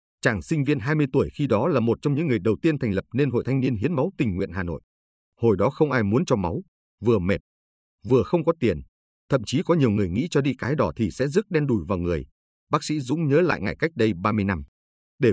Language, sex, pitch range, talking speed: Vietnamese, male, 90-140 Hz, 260 wpm